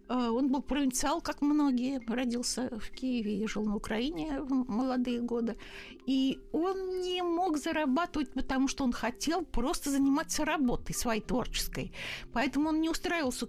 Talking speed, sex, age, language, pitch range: 145 wpm, female, 60-79, Russian, 240-295 Hz